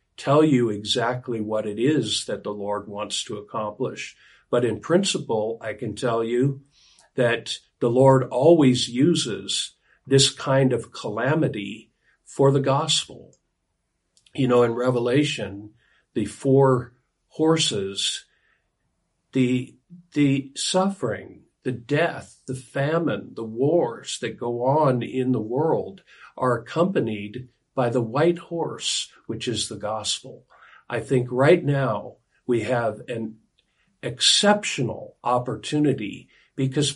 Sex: male